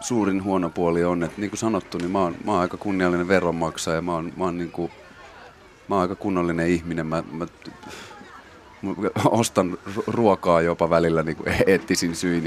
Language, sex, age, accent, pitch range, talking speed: Finnish, male, 30-49, native, 85-100 Hz, 180 wpm